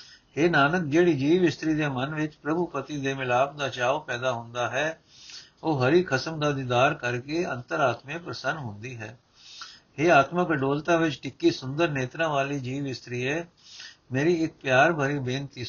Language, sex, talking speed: Punjabi, male, 170 wpm